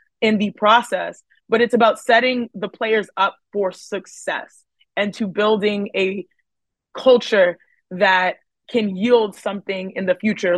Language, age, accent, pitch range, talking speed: English, 20-39, American, 200-240 Hz, 135 wpm